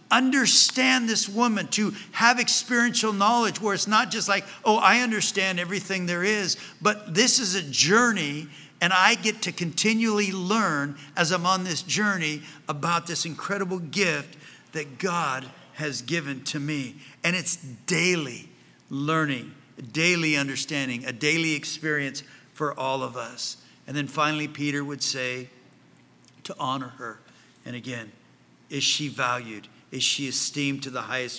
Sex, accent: male, American